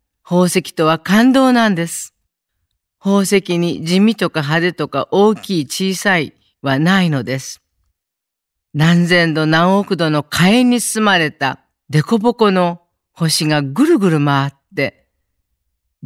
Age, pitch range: 40-59, 140-195 Hz